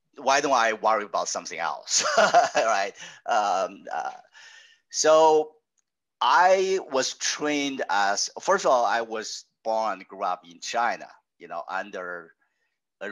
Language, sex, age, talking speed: English, male, 50-69, 135 wpm